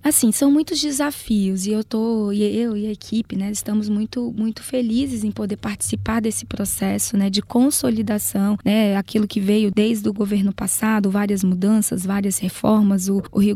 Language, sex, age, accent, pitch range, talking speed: Portuguese, female, 10-29, Brazilian, 205-245 Hz, 175 wpm